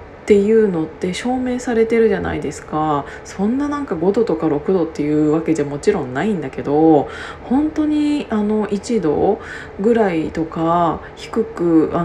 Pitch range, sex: 165-235 Hz, female